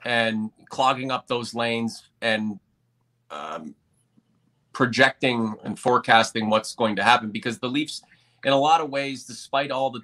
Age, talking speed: 30-49, 150 wpm